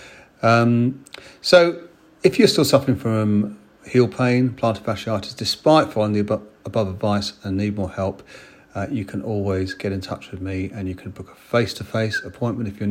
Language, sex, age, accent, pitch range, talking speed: English, male, 40-59, British, 95-120 Hz, 180 wpm